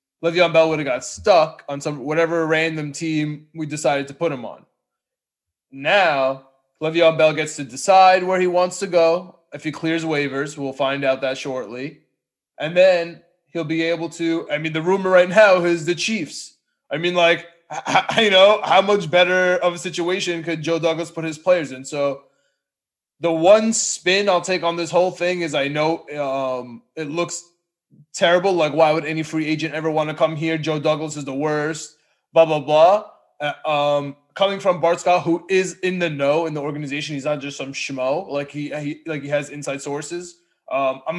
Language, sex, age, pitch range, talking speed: English, male, 20-39, 145-175 Hz, 200 wpm